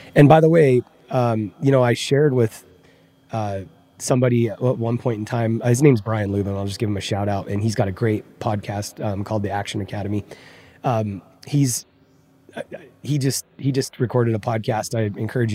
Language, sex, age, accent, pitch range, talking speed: English, male, 20-39, American, 110-135 Hz, 195 wpm